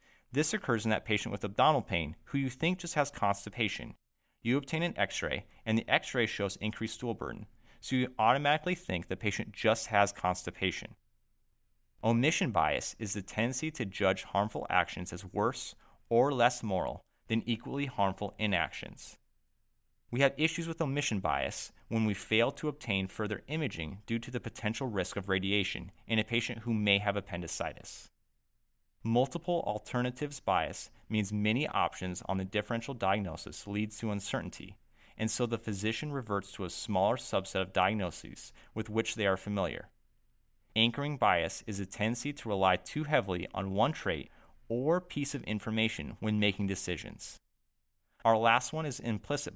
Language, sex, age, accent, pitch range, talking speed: English, male, 30-49, American, 100-125 Hz, 160 wpm